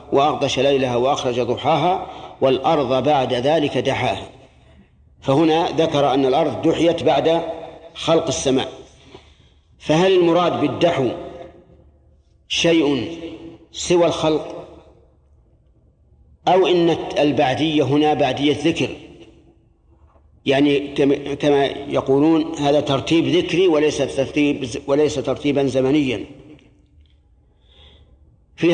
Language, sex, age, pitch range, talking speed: Arabic, male, 50-69, 130-160 Hz, 85 wpm